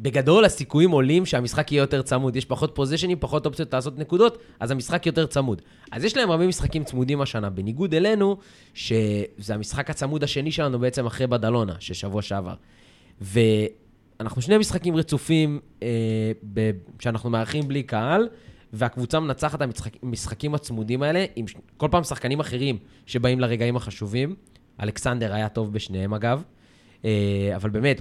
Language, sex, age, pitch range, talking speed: Hebrew, male, 20-39, 110-150 Hz, 150 wpm